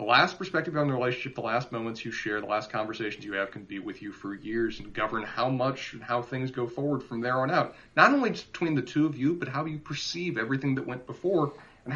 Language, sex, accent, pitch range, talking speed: English, male, American, 115-150 Hz, 255 wpm